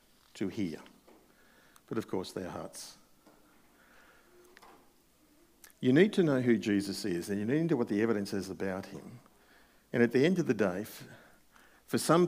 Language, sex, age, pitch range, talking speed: English, male, 50-69, 100-130 Hz, 165 wpm